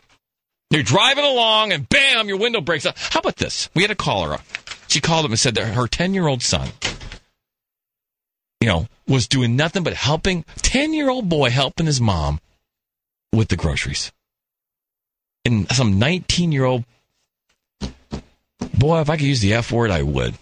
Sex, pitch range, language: male, 115-175 Hz, English